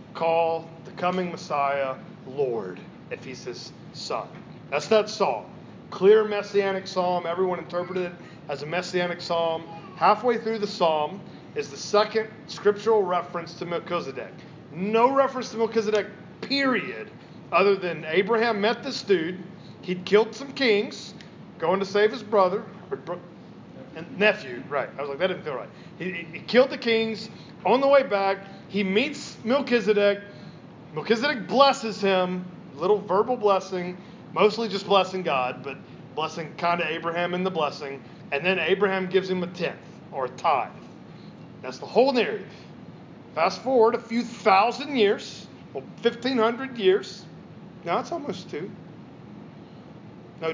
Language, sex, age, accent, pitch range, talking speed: English, male, 40-59, American, 175-220 Hz, 145 wpm